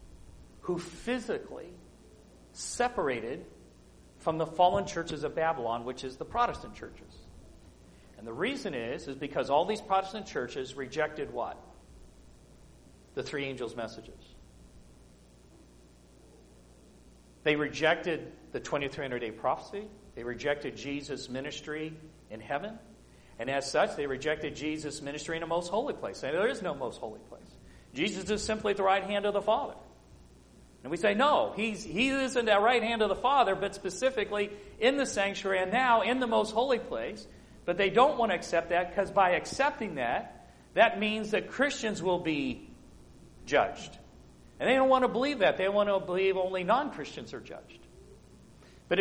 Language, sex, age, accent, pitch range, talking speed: English, male, 40-59, American, 145-220 Hz, 160 wpm